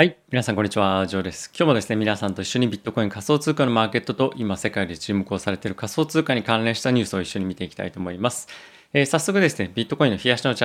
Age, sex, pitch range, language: 20-39, male, 105-145 Hz, Japanese